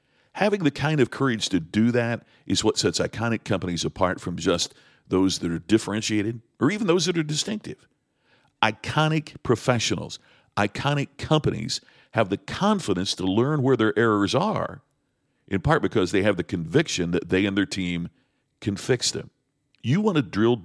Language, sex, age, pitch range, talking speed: English, male, 50-69, 95-145 Hz, 170 wpm